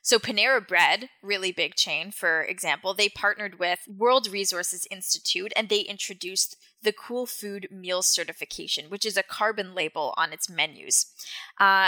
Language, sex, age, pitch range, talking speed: English, female, 10-29, 170-210 Hz, 155 wpm